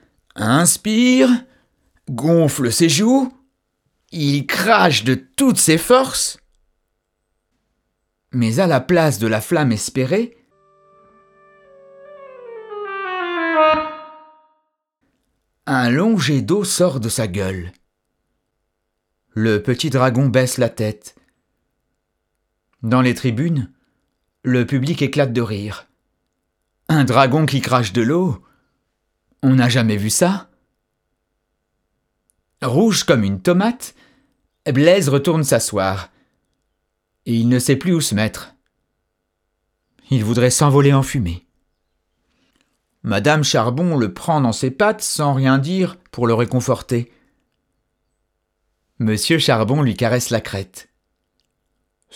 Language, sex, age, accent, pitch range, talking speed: French, male, 50-69, French, 105-170 Hz, 105 wpm